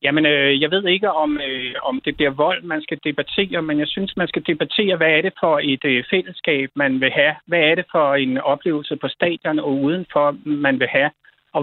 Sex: male